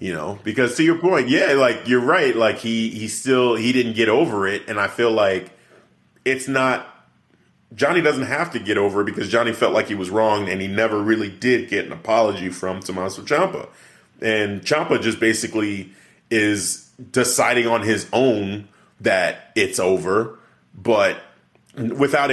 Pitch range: 100-120 Hz